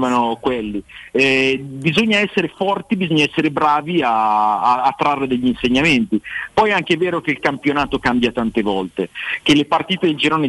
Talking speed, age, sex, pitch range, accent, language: 170 wpm, 30-49, male, 115-160 Hz, native, Italian